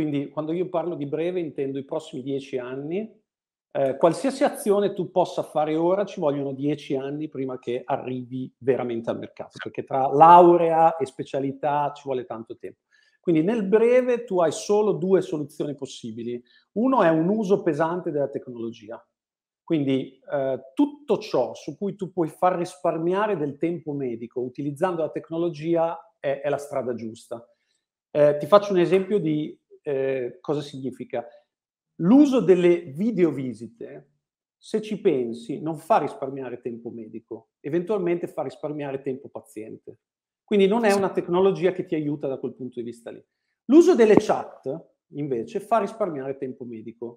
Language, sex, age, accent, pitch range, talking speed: Italian, male, 50-69, native, 135-185 Hz, 155 wpm